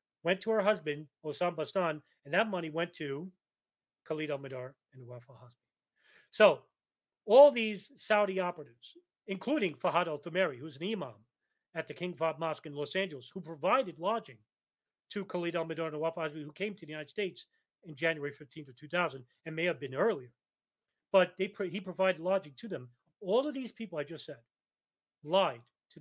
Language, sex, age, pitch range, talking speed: English, male, 40-59, 155-220 Hz, 175 wpm